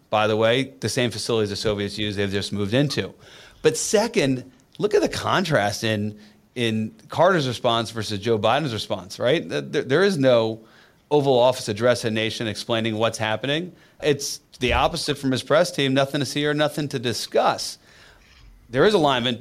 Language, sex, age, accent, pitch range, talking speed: English, male, 30-49, American, 110-135 Hz, 175 wpm